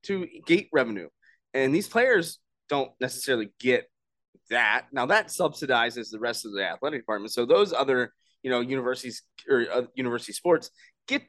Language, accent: English, American